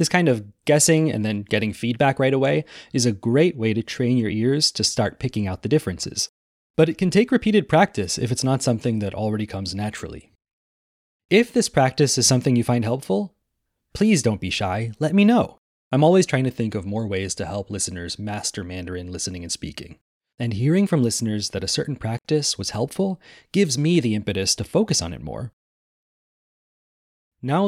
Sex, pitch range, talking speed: male, 100-150 Hz, 195 wpm